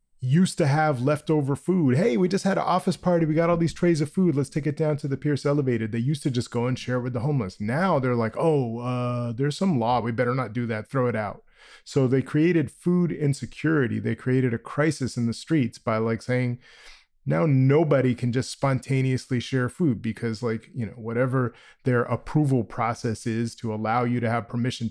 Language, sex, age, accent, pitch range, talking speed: English, male, 30-49, American, 115-145 Hz, 220 wpm